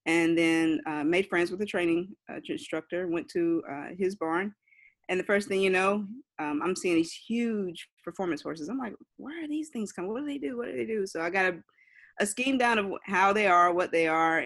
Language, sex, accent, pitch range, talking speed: English, female, American, 150-205 Hz, 235 wpm